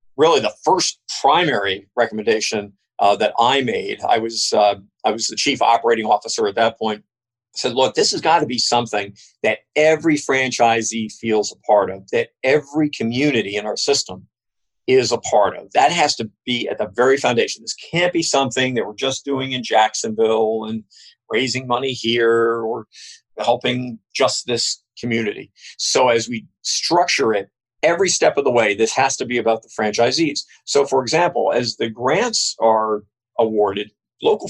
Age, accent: 50-69, American